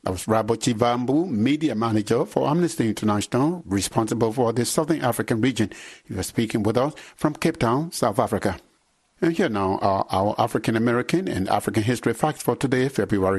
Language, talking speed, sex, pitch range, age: English, 170 wpm, male, 110-140 Hz, 50-69